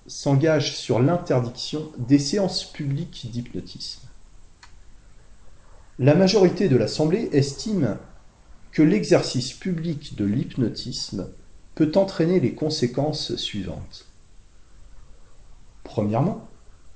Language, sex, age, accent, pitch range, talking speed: French, male, 40-59, French, 105-165 Hz, 80 wpm